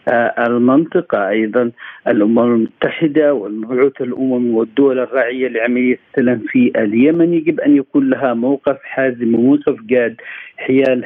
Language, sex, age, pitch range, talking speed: Arabic, male, 50-69, 115-130 Hz, 120 wpm